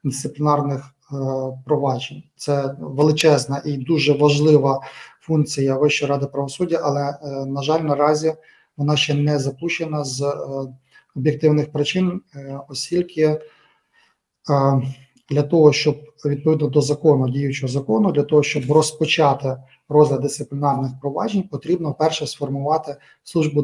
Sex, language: male, Ukrainian